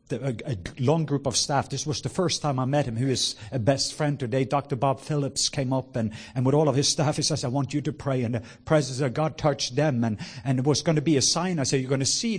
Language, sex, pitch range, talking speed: English, male, 130-170 Hz, 295 wpm